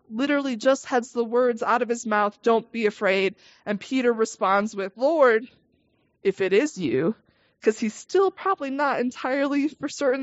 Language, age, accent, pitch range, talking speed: English, 20-39, American, 220-280 Hz, 170 wpm